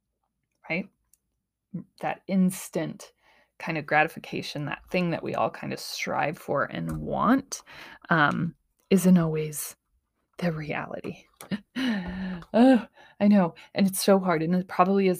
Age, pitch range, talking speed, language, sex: 20-39, 165-200 Hz, 125 wpm, English, female